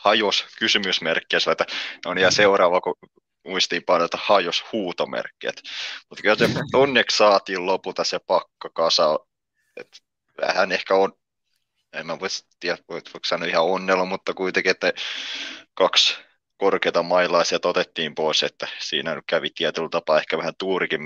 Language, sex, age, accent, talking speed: Finnish, male, 20-39, native, 115 wpm